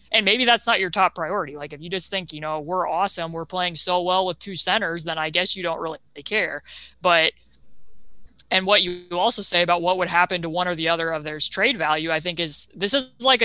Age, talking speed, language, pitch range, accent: 20-39, 245 wpm, English, 160-190 Hz, American